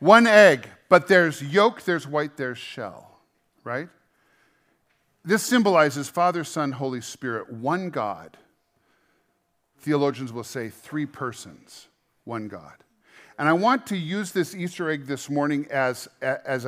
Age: 50-69